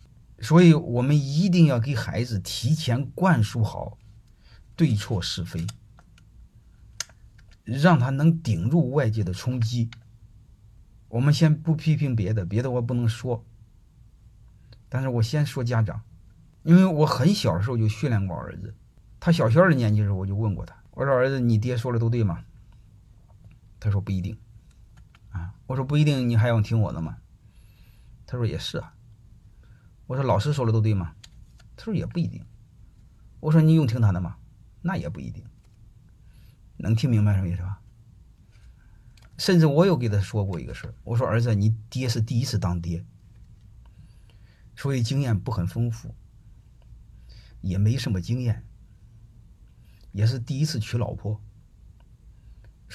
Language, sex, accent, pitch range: Chinese, male, native, 105-125 Hz